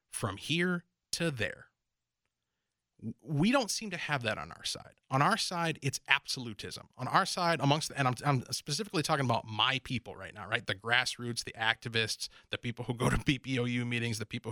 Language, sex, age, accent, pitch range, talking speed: English, male, 30-49, American, 120-175 Hz, 195 wpm